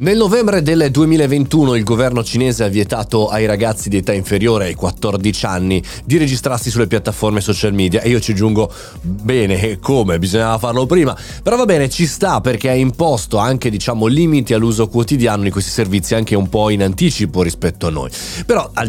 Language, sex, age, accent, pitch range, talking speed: Italian, male, 30-49, native, 100-125 Hz, 185 wpm